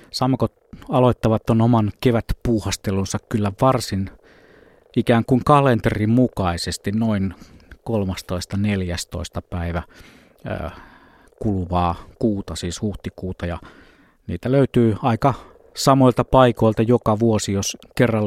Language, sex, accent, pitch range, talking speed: Finnish, male, native, 95-120 Hz, 90 wpm